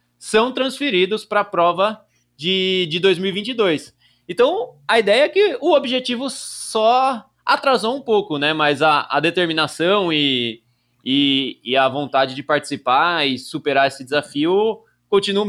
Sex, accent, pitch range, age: male, Brazilian, 140-200 Hz, 20-39